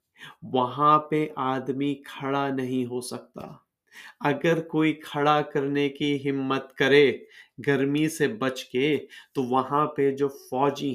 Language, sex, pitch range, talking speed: Urdu, male, 130-155 Hz, 125 wpm